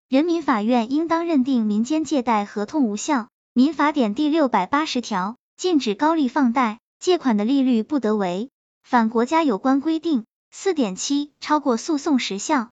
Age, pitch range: 10-29, 225-295 Hz